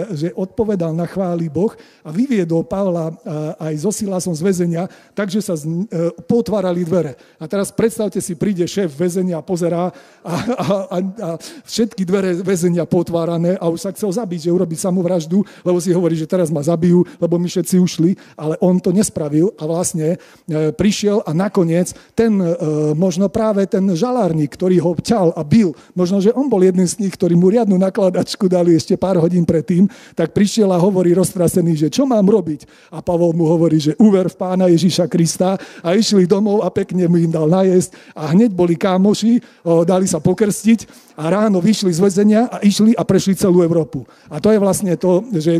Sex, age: male, 40-59